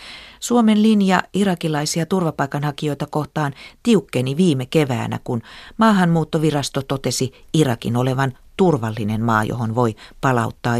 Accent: native